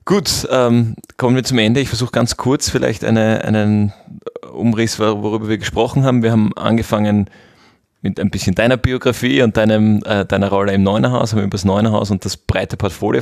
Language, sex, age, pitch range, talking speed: German, male, 30-49, 95-115 Hz, 175 wpm